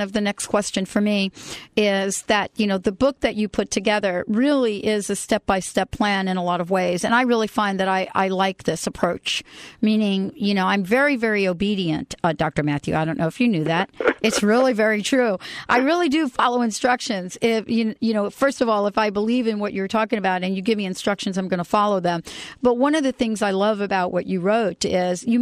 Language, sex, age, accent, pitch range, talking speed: English, female, 40-59, American, 190-235 Hz, 240 wpm